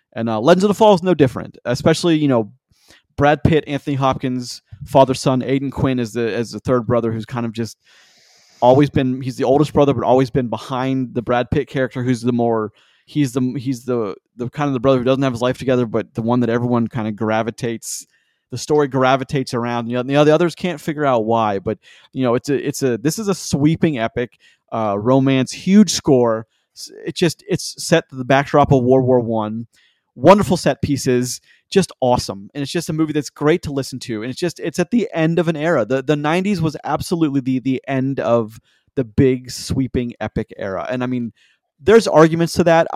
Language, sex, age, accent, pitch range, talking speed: English, male, 30-49, American, 120-155 Hz, 220 wpm